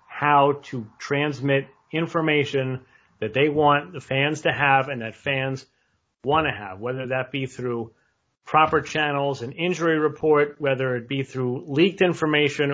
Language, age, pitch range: English, 40-59, 125-155 Hz